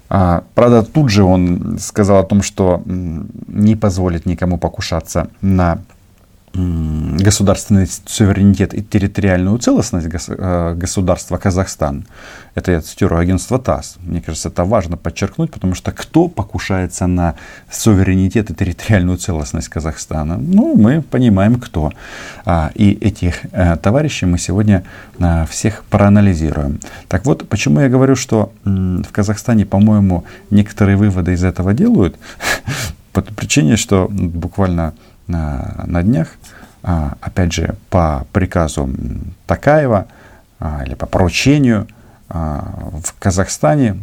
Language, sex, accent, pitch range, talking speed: Russian, male, native, 90-110 Hz, 115 wpm